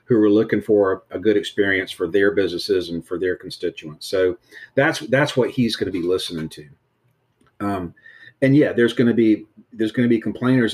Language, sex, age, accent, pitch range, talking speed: English, male, 40-59, American, 100-115 Hz, 200 wpm